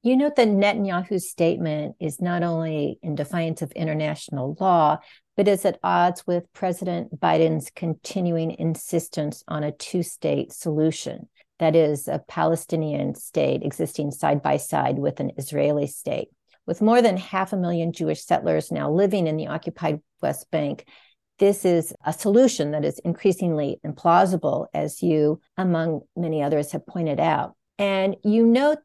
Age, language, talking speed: 50-69, English, 150 wpm